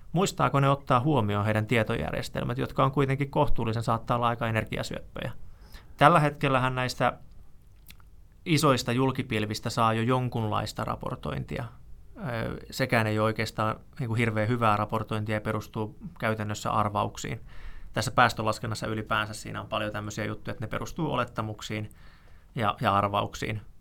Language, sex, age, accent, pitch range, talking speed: Finnish, male, 20-39, native, 105-120 Hz, 125 wpm